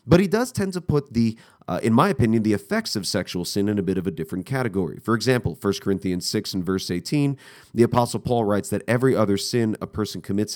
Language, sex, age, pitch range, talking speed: English, male, 30-49, 100-135 Hz, 240 wpm